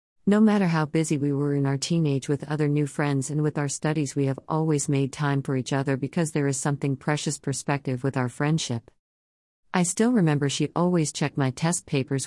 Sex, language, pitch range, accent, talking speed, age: female, English, 135-155 Hz, American, 210 wpm, 50-69